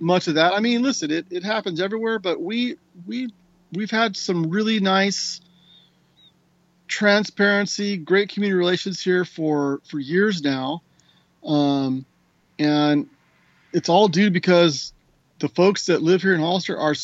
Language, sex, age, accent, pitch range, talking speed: English, male, 40-59, American, 150-195 Hz, 145 wpm